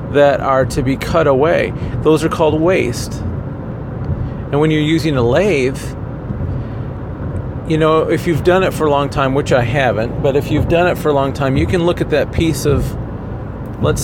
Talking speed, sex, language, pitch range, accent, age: 195 wpm, male, English, 125-155 Hz, American, 40-59